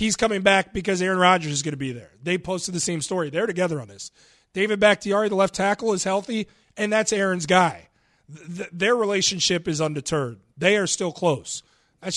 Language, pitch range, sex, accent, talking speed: English, 165-225 Hz, male, American, 195 wpm